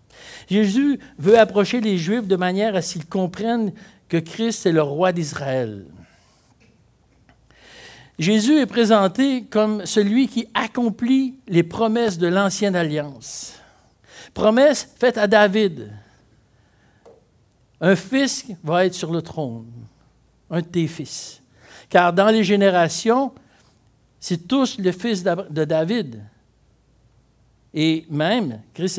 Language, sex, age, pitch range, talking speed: French, male, 60-79, 130-215 Hz, 120 wpm